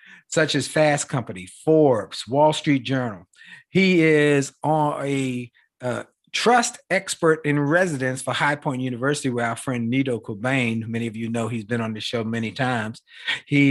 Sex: male